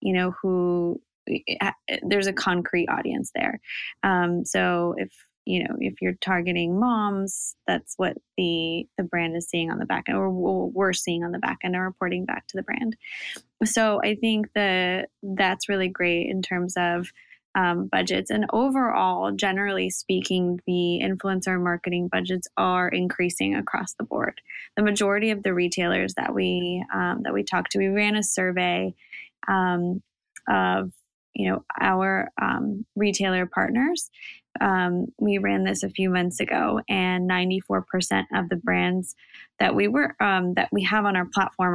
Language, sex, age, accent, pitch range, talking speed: English, female, 20-39, American, 180-205 Hz, 165 wpm